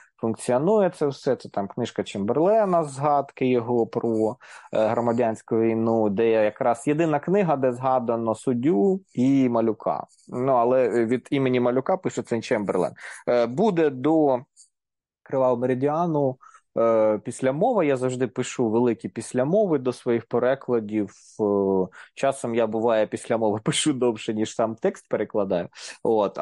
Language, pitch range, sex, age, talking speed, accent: Ukrainian, 115-155 Hz, male, 20-39, 125 wpm, native